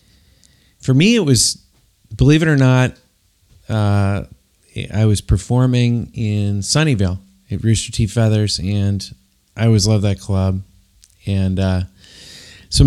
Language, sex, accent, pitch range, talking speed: English, male, American, 95-115 Hz, 125 wpm